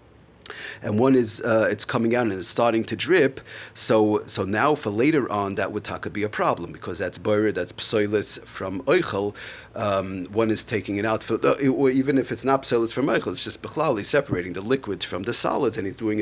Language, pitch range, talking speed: English, 105-125 Hz, 220 wpm